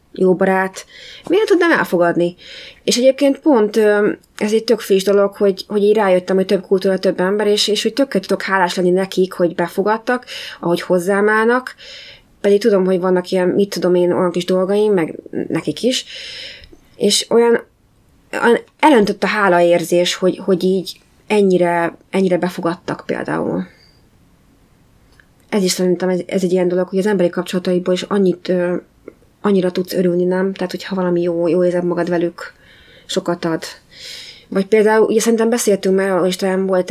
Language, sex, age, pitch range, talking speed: Hungarian, female, 20-39, 175-200 Hz, 160 wpm